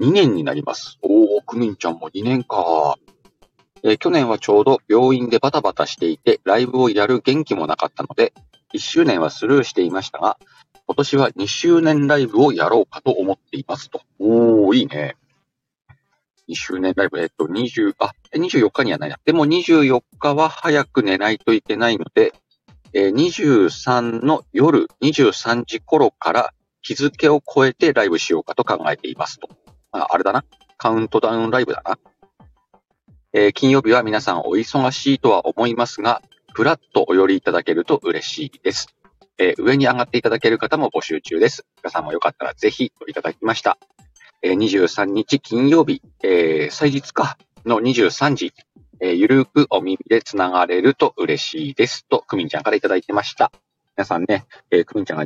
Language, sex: Japanese, male